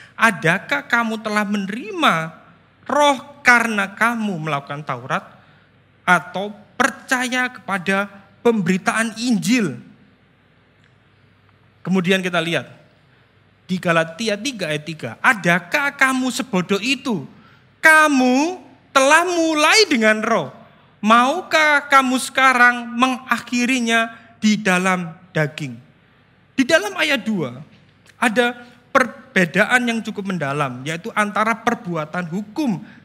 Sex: male